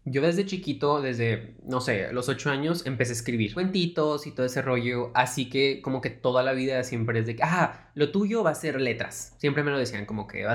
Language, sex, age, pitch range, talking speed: Spanish, male, 20-39, 120-150 Hz, 235 wpm